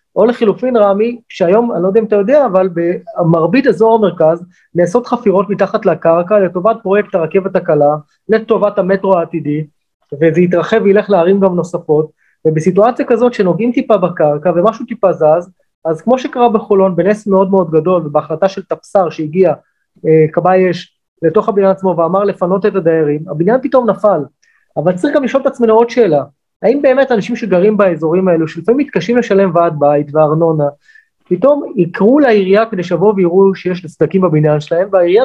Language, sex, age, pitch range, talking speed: Hebrew, male, 30-49, 170-225 Hz, 160 wpm